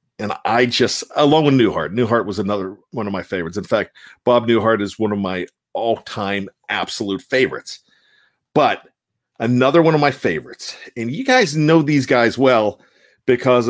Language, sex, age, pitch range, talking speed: English, male, 40-59, 115-140 Hz, 170 wpm